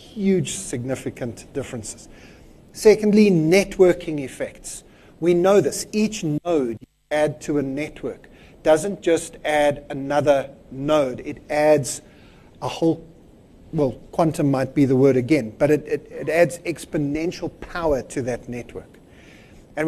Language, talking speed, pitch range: English, 125 wpm, 130-165 Hz